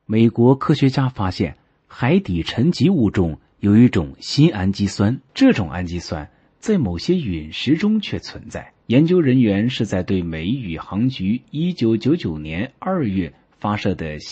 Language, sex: Chinese, male